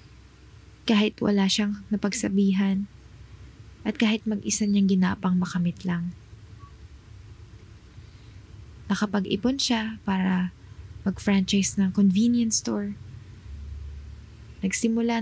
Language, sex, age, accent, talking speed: Filipino, female, 20-39, native, 70 wpm